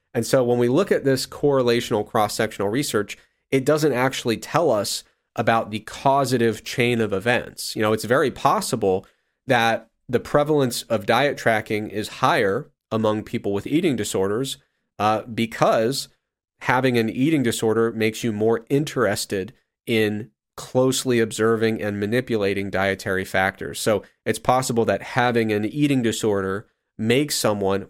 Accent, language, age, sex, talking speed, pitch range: American, English, 30-49, male, 145 wpm, 105-125 Hz